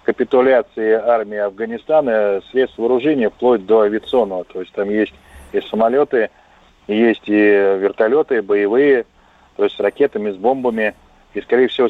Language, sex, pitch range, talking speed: Russian, male, 105-135 Hz, 135 wpm